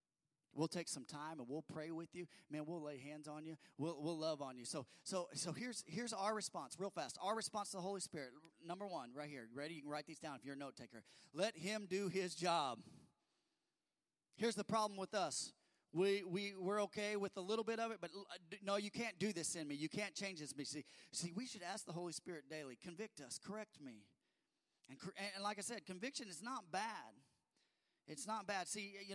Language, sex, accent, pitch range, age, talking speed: English, male, American, 160-210 Hz, 30-49, 230 wpm